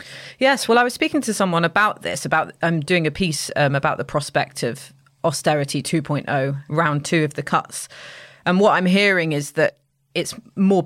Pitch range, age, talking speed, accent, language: 140-175 Hz, 30-49, 190 wpm, British, English